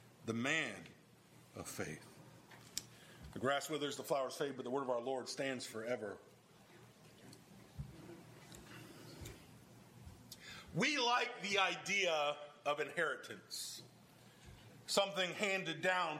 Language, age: English, 40-59